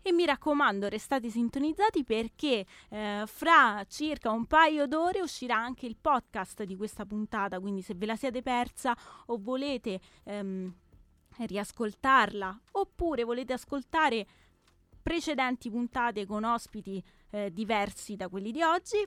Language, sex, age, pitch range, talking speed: Italian, female, 20-39, 210-275 Hz, 130 wpm